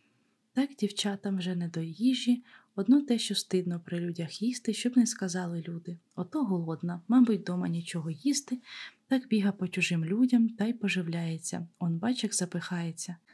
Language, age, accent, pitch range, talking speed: Ukrainian, 20-39, native, 175-225 Hz, 150 wpm